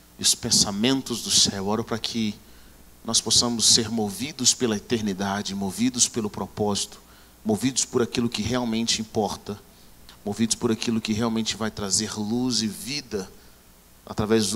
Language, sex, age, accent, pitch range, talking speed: Portuguese, male, 40-59, Brazilian, 100-125 Hz, 145 wpm